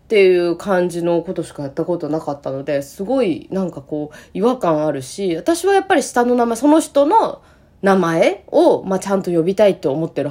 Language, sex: Japanese, female